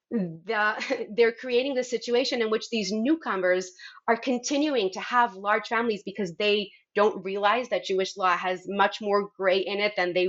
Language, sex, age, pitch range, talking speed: English, female, 30-49, 190-275 Hz, 170 wpm